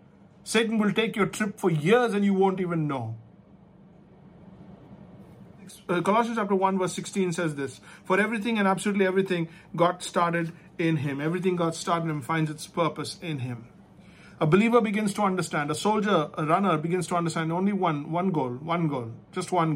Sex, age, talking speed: male, 50-69, 175 wpm